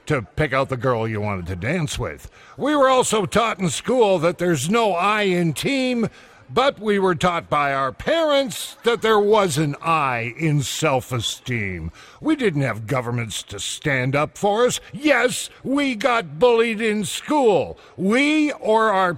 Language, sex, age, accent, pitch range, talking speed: English, male, 50-69, American, 140-220 Hz, 170 wpm